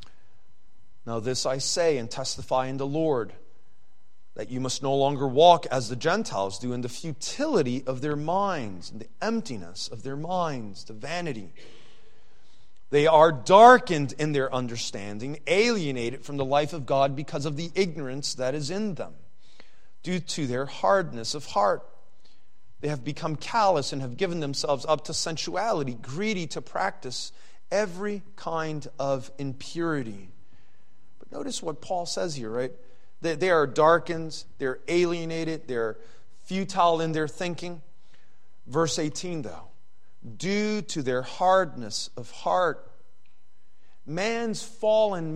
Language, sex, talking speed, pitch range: English, male, 140 wpm, 130-180 Hz